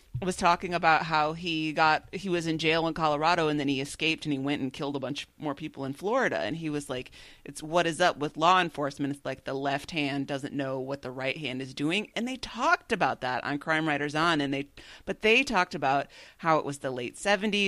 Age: 30-49